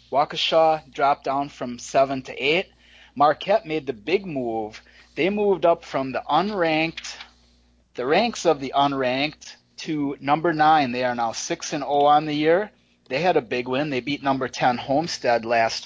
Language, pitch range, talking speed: English, 125-165 Hz, 175 wpm